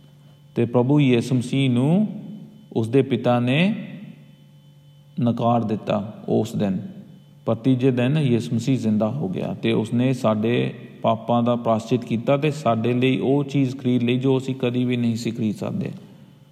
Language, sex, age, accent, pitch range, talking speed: English, male, 40-59, Indian, 120-145 Hz, 155 wpm